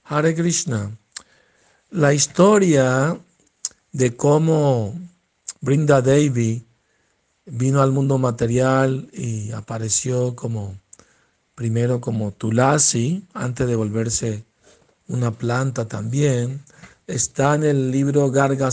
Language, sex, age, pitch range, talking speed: Spanish, male, 60-79, 125-150 Hz, 95 wpm